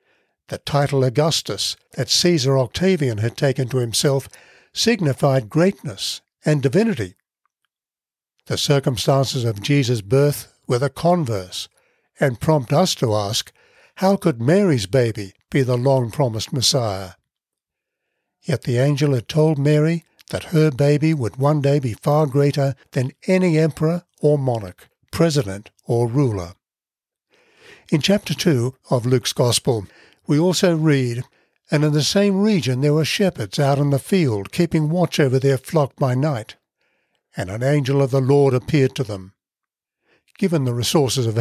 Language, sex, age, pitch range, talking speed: English, male, 60-79, 125-155 Hz, 145 wpm